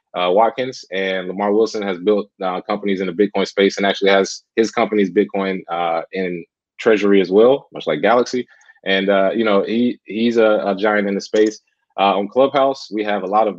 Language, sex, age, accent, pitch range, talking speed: English, male, 20-39, American, 100-110 Hz, 205 wpm